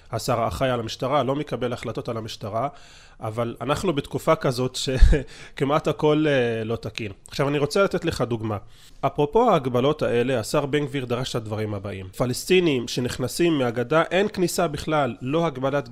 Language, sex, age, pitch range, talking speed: Hebrew, male, 20-39, 125-160 Hz, 155 wpm